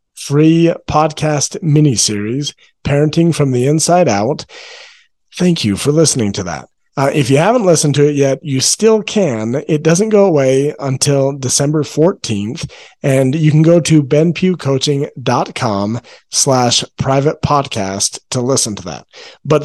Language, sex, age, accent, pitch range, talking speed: English, male, 40-59, American, 130-165 Hz, 140 wpm